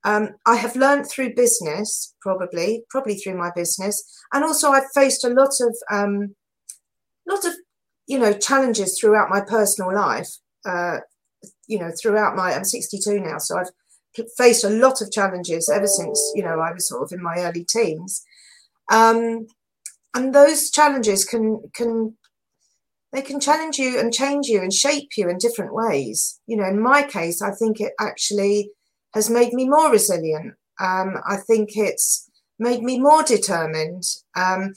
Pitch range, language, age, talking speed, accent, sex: 195-245 Hz, English, 40-59, 170 wpm, British, female